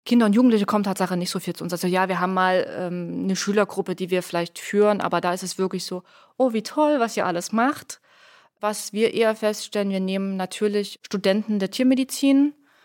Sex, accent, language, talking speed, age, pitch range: female, German, German, 210 wpm, 20-39, 185-210 Hz